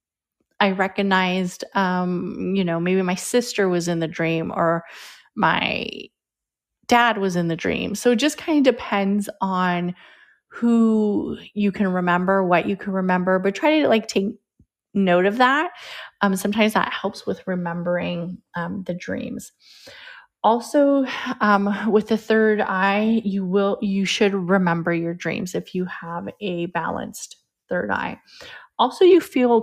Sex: female